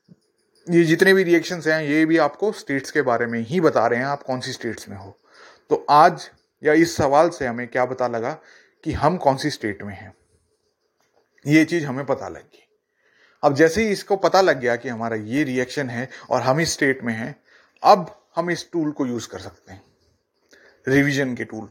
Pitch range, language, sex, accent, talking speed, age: 130-180 Hz, Hindi, male, native, 205 wpm, 30-49